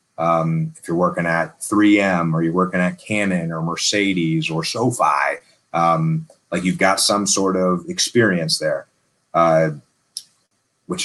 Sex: male